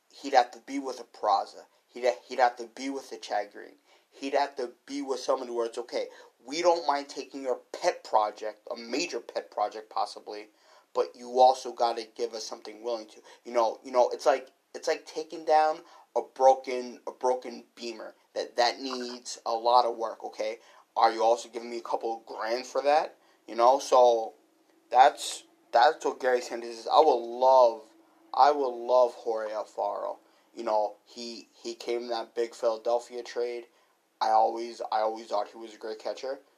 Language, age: English, 30-49